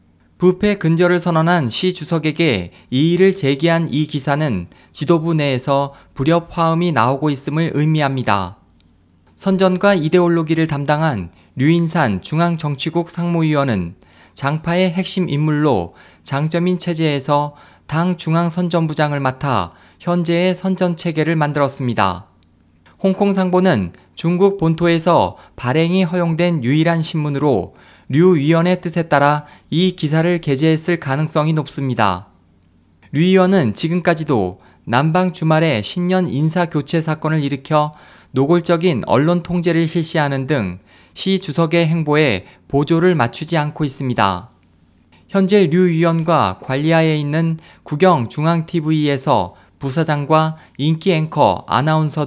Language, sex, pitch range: Korean, male, 135-170 Hz